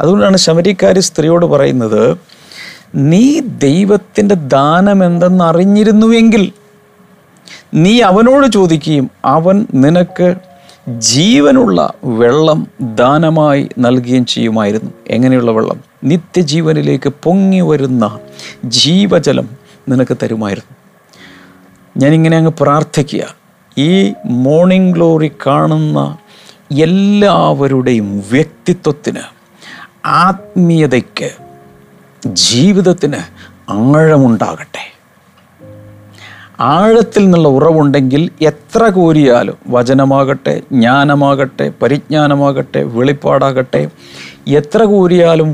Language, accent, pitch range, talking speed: Malayalam, native, 125-180 Hz, 65 wpm